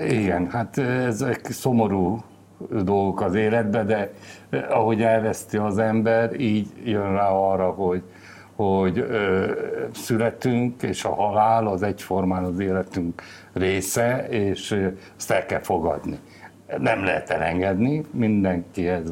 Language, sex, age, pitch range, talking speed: Hungarian, male, 60-79, 90-110 Hz, 115 wpm